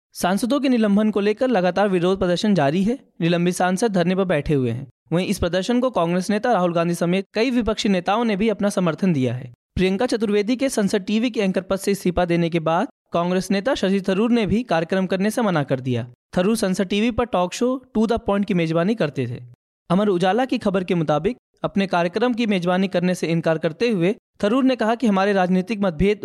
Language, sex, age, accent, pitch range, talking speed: Hindi, male, 20-39, native, 180-220 Hz, 215 wpm